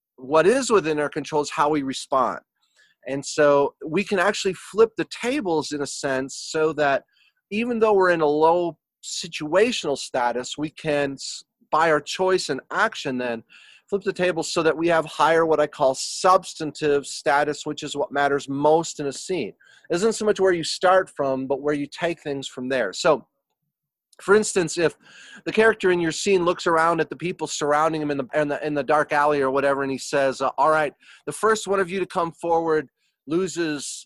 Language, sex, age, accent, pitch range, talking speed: English, male, 30-49, American, 140-175 Hz, 205 wpm